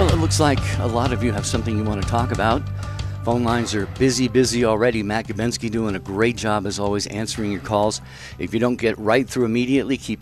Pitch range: 100-125 Hz